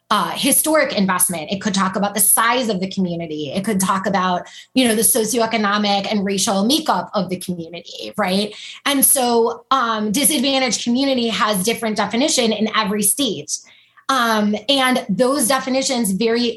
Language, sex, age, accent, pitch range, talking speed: English, female, 20-39, American, 205-245 Hz, 155 wpm